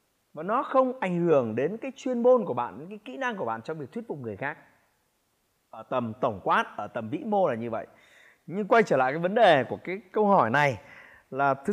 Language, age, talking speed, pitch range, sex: Vietnamese, 20-39, 245 wpm, 150-220 Hz, male